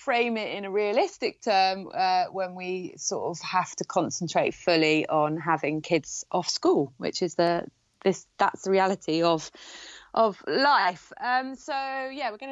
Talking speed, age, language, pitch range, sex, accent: 170 wpm, 20-39, English, 180-225 Hz, female, British